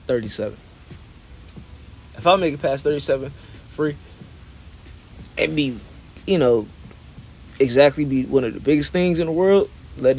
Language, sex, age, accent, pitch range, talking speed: English, male, 20-39, American, 90-135 Hz, 135 wpm